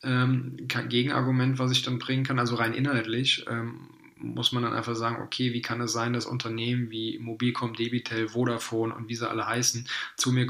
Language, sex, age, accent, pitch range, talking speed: German, male, 20-39, German, 115-130 Hz, 185 wpm